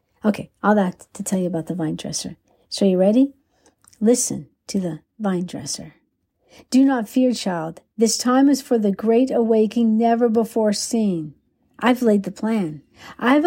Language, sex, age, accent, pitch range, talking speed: English, female, 60-79, American, 195-250 Hz, 170 wpm